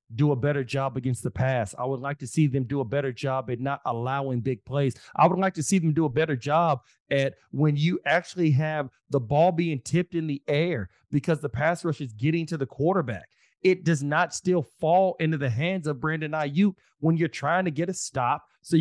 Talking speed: 230 wpm